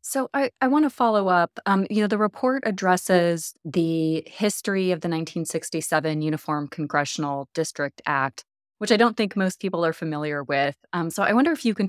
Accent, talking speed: American, 185 wpm